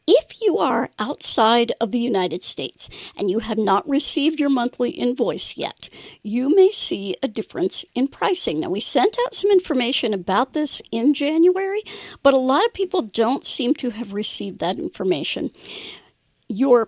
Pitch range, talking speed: 210-285 Hz, 165 wpm